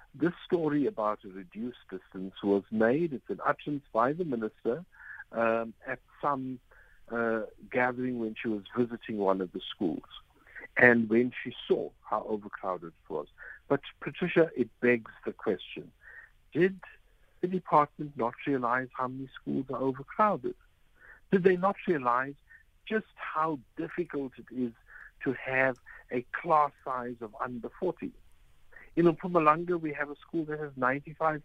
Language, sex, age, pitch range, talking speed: English, male, 60-79, 115-170 Hz, 150 wpm